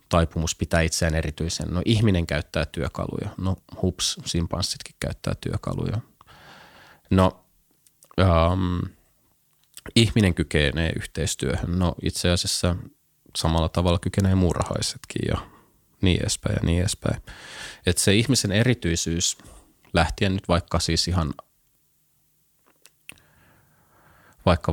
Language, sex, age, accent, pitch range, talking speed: Finnish, male, 20-39, native, 80-95 Hz, 95 wpm